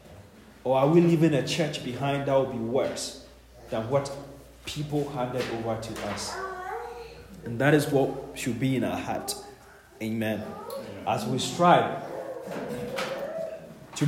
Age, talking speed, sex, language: 30-49, 135 wpm, male, English